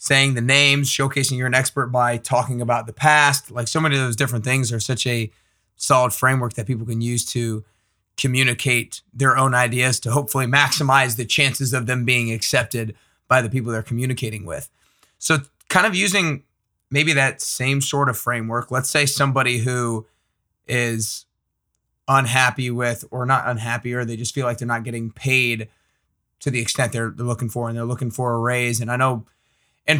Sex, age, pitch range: male, 20-39, 120-135 Hz